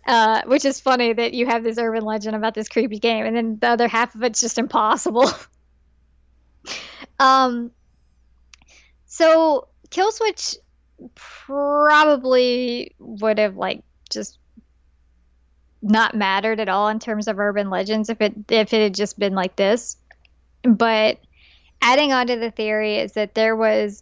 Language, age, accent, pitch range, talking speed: English, 20-39, American, 205-240 Hz, 145 wpm